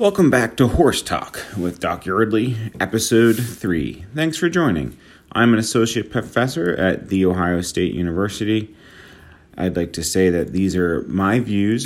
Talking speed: 155 wpm